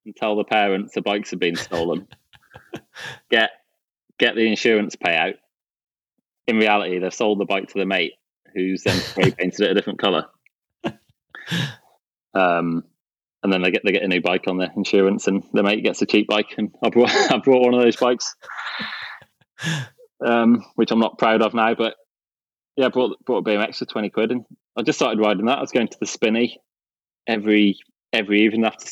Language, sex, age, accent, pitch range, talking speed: English, male, 20-39, British, 100-125 Hz, 190 wpm